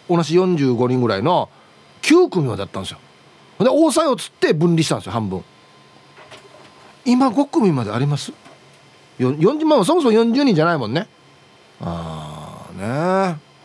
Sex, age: male, 40-59